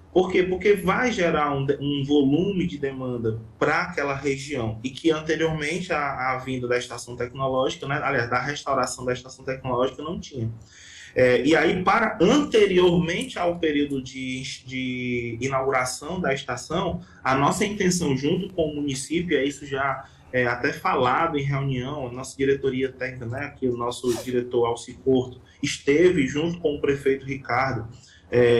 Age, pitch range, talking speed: 20-39, 125-145 Hz, 160 wpm